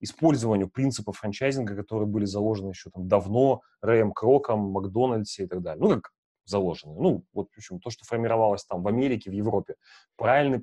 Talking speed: 175 wpm